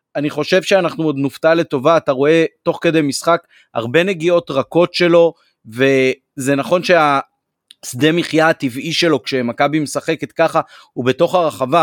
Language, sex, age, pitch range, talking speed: Hebrew, male, 30-49, 140-175 Hz, 135 wpm